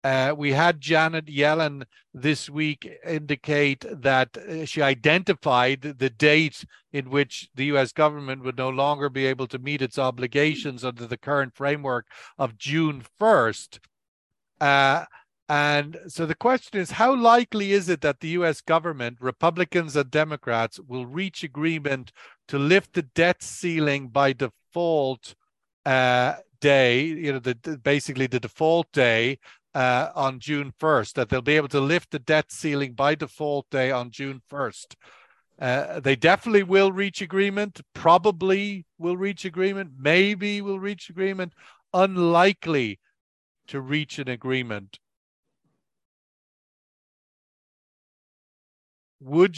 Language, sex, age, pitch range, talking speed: English, male, 50-69, 135-170 Hz, 135 wpm